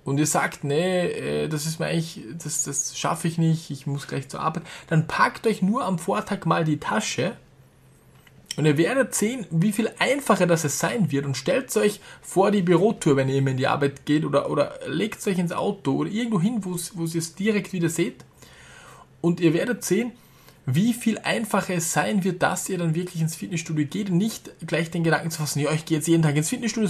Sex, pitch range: male, 145-195 Hz